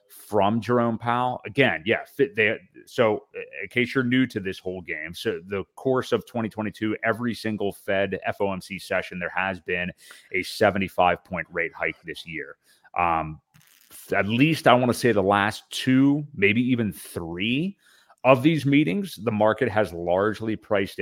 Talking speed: 155 wpm